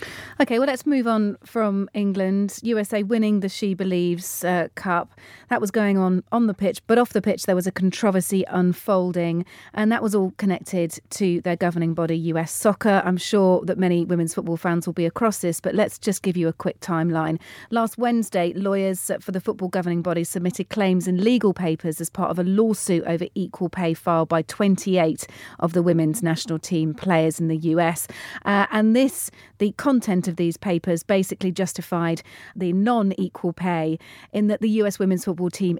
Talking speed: 190 wpm